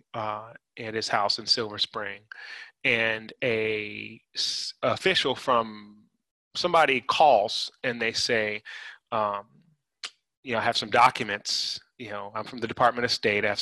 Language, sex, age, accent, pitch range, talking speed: English, male, 30-49, American, 105-115 Hz, 145 wpm